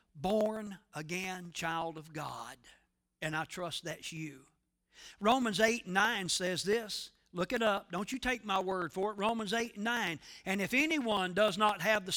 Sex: male